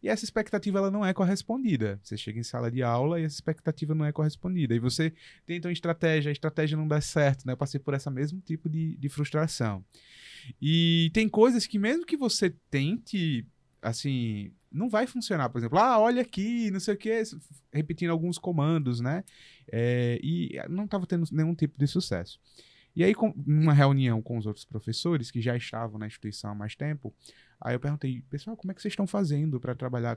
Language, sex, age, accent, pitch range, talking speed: Portuguese, male, 20-39, Brazilian, 120-165 Hz, 205 wpm